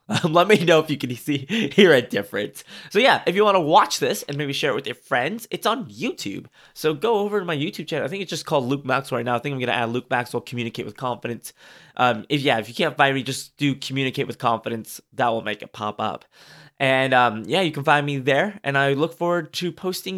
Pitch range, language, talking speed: 125-165 Hz, English, 265 wpm